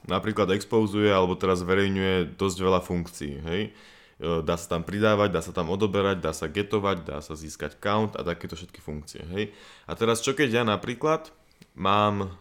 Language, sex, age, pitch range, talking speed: Slovak, male, 20-39, 90-110 Hz, 175 wpm